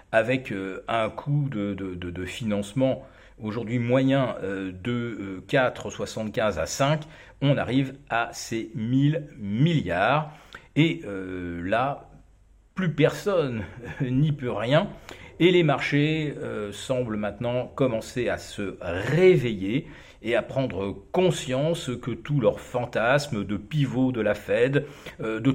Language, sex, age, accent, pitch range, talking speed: French, male, 40-59, French, 100-145 Hz, 120 wpm